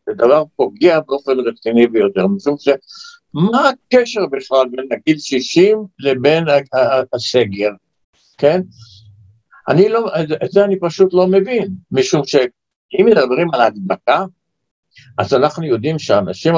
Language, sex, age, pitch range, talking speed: Hebrew, male, 60-79, 130-185 Hz, 125 wpm